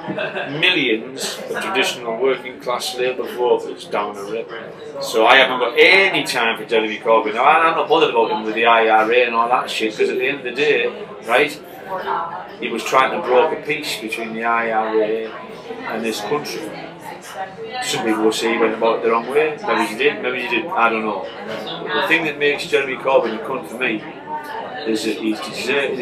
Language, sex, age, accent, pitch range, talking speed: English, male, 30-49, British, 115-170 Hz, 195 wpm